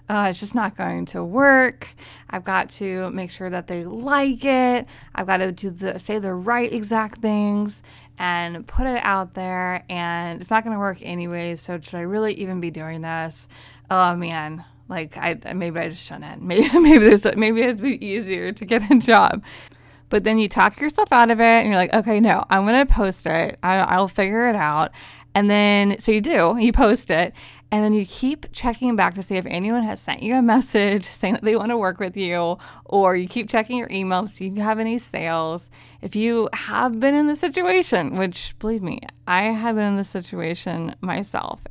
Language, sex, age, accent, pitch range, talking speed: English, female, 20-39, American, 180-230 Hz, 215 wpm